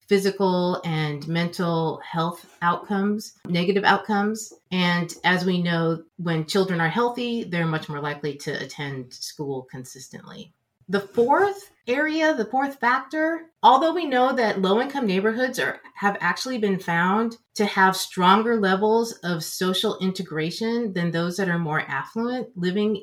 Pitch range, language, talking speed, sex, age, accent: 165-220 Hz, English, 140 wpm, female, 30-49, American